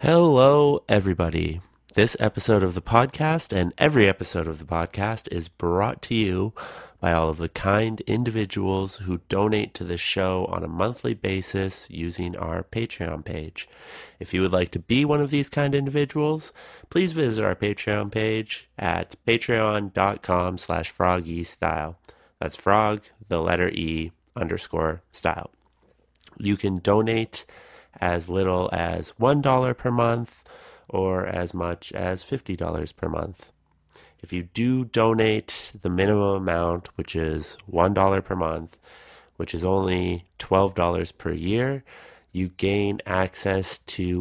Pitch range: 85-110 Hz